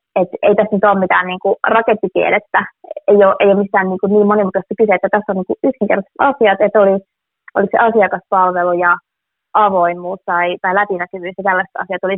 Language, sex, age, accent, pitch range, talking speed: Finnish, female, 20-39, native, 185-205 Hz, 180 wpm